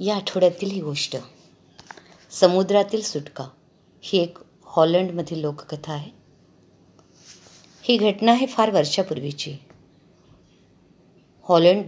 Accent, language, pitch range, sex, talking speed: native, Marathi, 155-190 Hz, female, 85 wpm